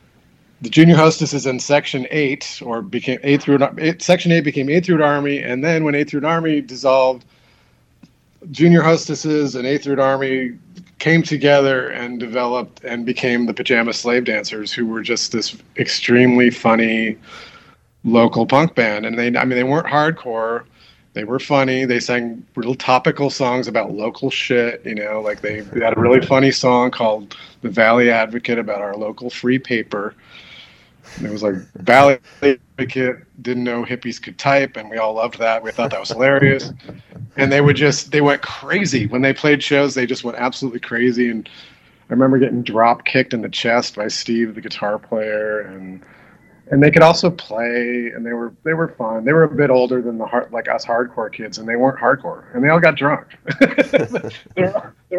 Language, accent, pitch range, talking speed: English, American, 115-145 Hz, 185 wpm